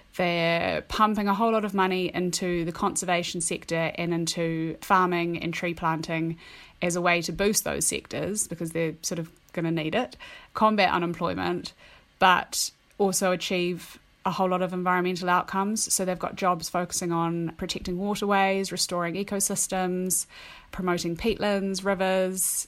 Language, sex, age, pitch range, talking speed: English, female, 20-39, 170-190 Hz, 150 wpm